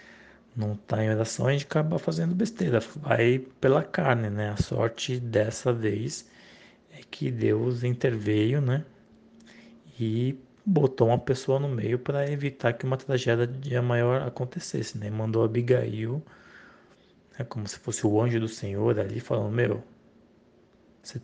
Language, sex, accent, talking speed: Portuguese, male, Brazilian, 140 wpm